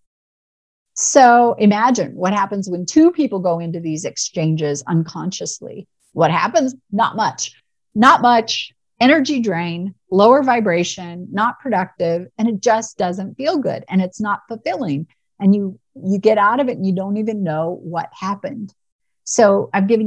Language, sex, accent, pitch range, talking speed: English, female, American, 180-230 Hz, 155 wpm